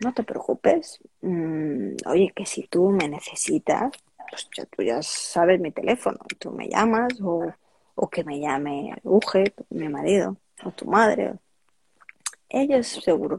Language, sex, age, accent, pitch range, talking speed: Spanish, female, 20-39, Spanish, 170-235 Hz, 150 wpm